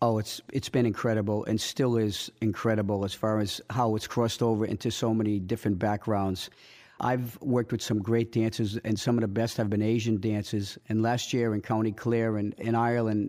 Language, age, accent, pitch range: English, 50-69, American, 105-115 Hz